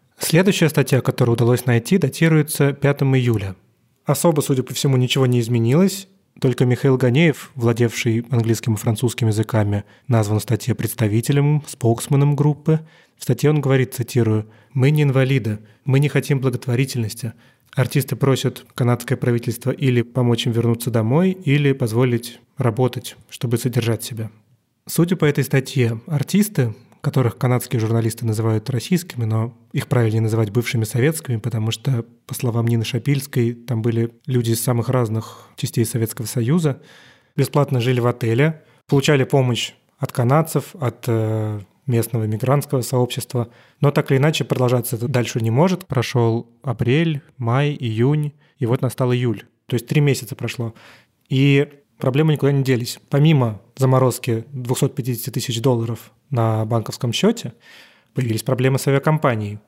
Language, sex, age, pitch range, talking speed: Russian, male, 30-49, 115-140 Hz, 140 wpm